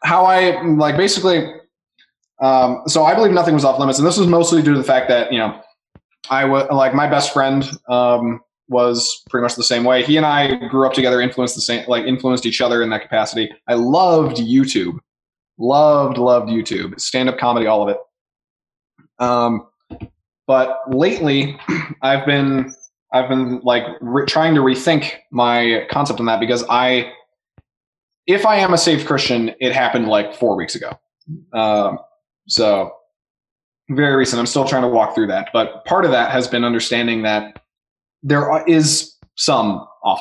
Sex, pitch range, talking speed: male, 120-150 Hz, 175 wpm